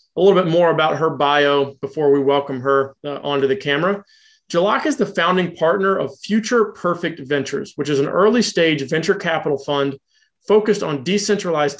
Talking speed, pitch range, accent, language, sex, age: 180 wpm, 150-200 Hz, American, English, male, 30-49